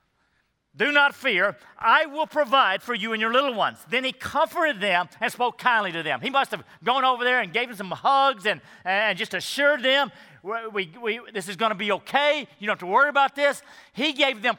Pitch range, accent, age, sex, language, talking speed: 185-255 Hz, American, 50-69, male, English, 230 wpm